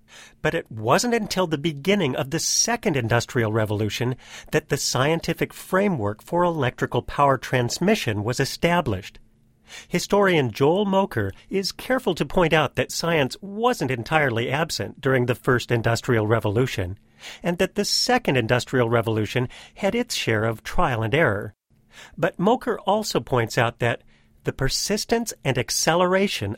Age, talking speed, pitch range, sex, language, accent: 40-59, 140 wpm, 115-170 Hz, male, English, American